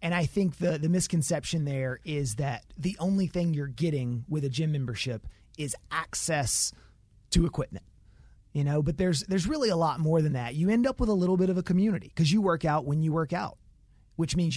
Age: 30-49